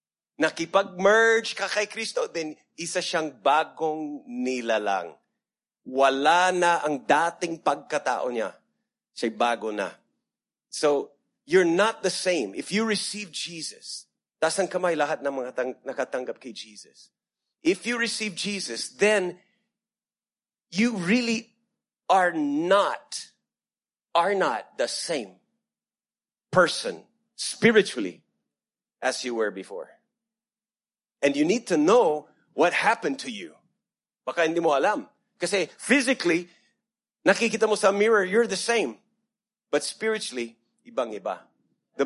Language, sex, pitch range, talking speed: English, male, 150-225 Hz, 120 wpm